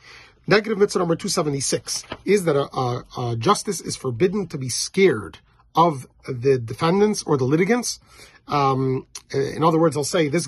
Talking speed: 160 wpm